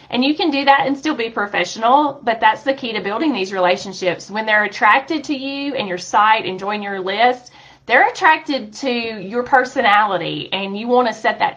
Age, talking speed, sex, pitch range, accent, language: 30-49, 205 wpm, female, 175-240 Hz, American, English